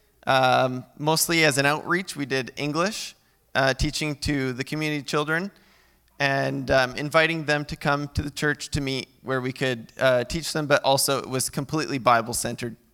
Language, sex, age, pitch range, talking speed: English, male, 20-39, 120-145 Hz, 170 wpm